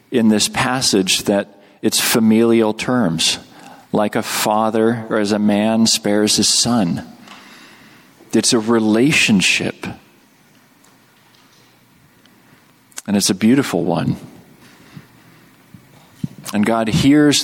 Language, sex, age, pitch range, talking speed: English, male, 40-59, 105-120 Hz, 95 wpm